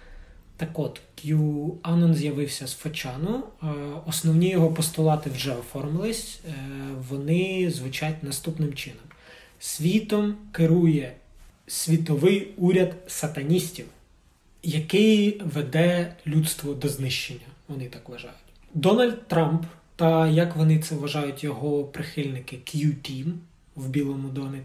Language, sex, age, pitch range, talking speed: Ukrainian, male, 20-39, 140-170 Hz, 100 wpm